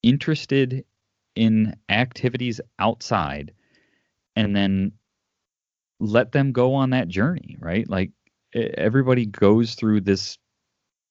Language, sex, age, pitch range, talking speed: English, male, 30-49, 85-110 Hz, 95 wpm